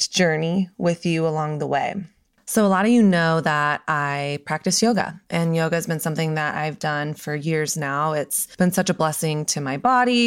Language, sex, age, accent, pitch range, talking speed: English, female, 20-39, American, 155-200 Hz, 205 wpm